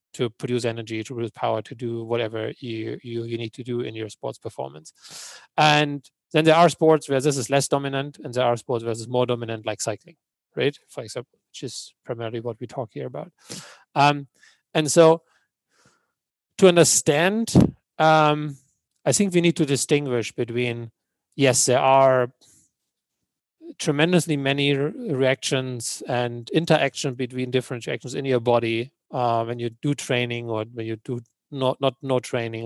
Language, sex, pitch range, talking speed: English, male, 120-155 Hz, 170 wpm